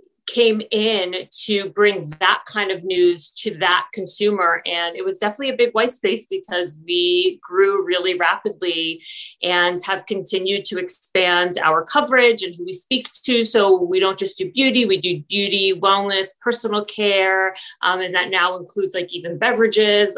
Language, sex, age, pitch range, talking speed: English, female, 30-49, 185-240 Hz, 165 wpm